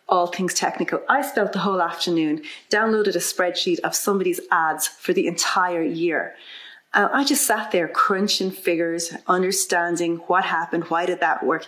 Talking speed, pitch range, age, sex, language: 165 wpm, 175-230 Hz, 30-49, female, English